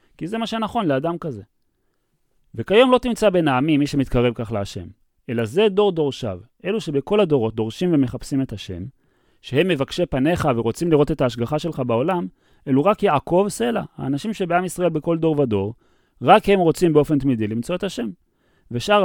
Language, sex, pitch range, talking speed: Hebrew, male, 115-165 Hz, 170 wpm